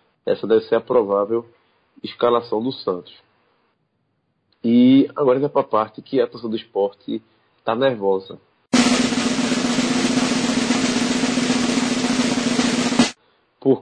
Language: Portuguese